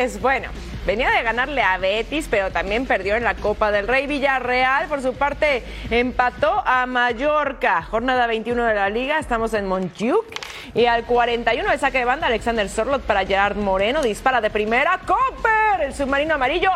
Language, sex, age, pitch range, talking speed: Spanish, female, 30-49, 225-310 Hz, 170 wpm